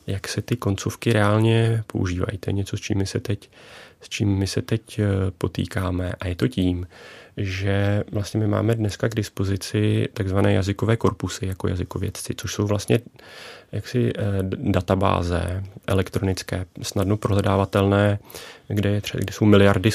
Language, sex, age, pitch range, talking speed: Czech, male, 30-49, 95-110 Hz, 145 wpm